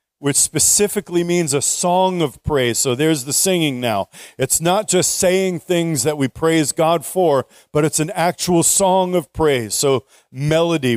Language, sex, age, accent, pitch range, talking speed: English, male, 40-59, American, 140-175 Hz, 170 wpm